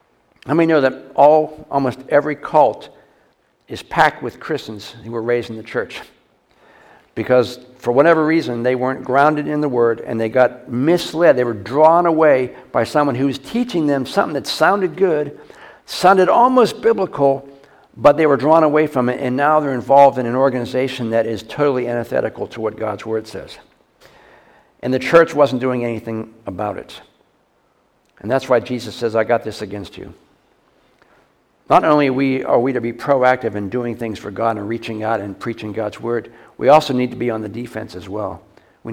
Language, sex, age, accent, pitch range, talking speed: English, male, 60-79, American, 115-145 Hz, 185 wpm